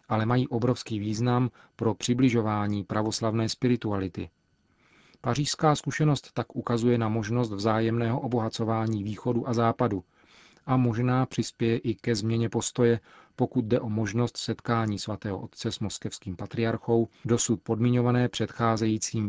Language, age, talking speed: Czech, 40-59, 120 wpm